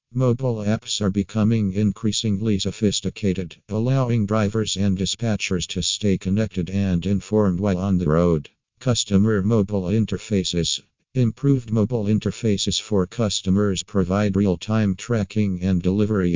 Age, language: 50-69, English